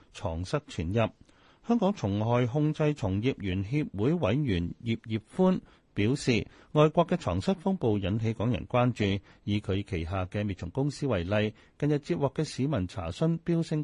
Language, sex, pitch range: Chinese, male, 100-140 Hz